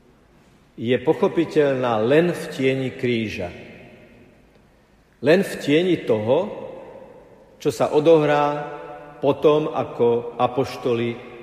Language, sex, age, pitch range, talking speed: Slovak, male, 50-69, 120-140 Hz, 85 wpm